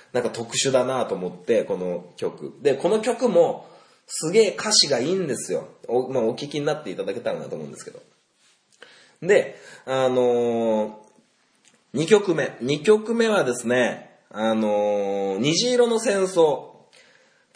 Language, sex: Japanese, male